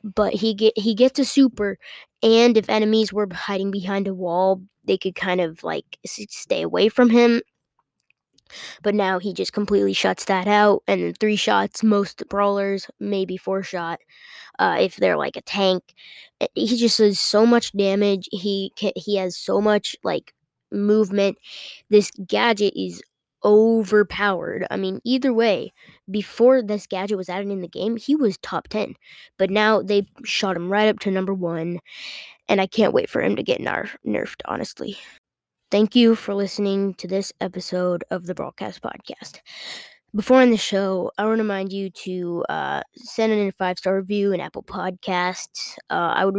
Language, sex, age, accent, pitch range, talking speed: English, female, 10-29, American, 190-215 Hz, 175 wpm